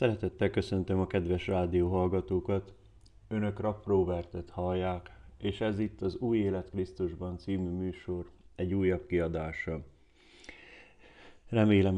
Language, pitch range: Hungarian, 95-110 Hz